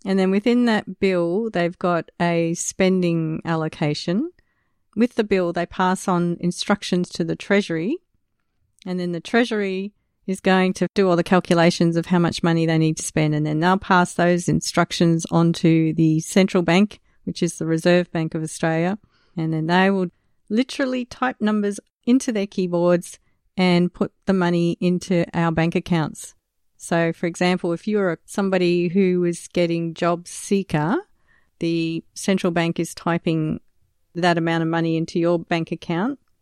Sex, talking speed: female, 165 wpm